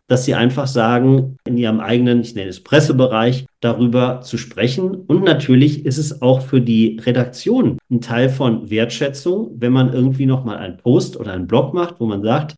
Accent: German